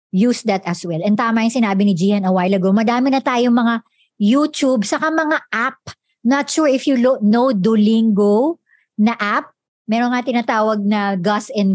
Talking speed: 180 wpm